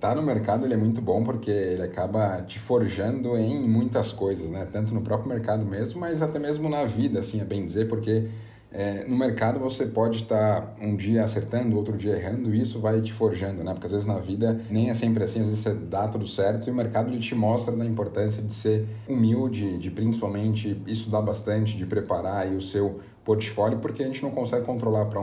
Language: Portuguese